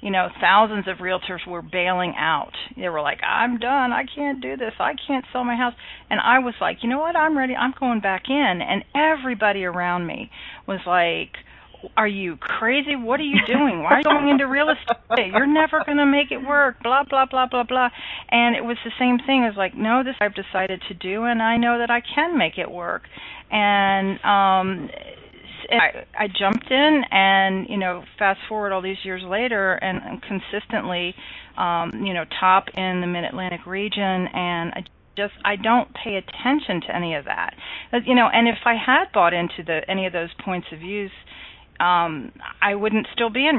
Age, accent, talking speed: 40-59, American, 205 wpm